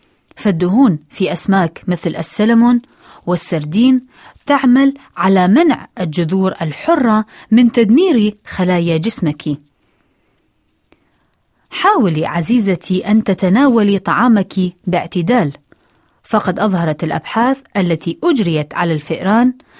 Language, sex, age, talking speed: Arabic, female, 30-49, 85 wpm